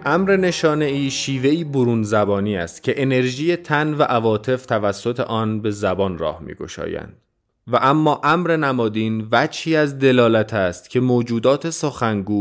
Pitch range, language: 110-140 Hz, Persian